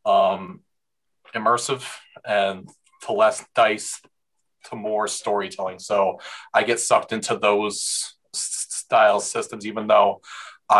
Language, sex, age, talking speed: English, male, 30-49, 105 wpm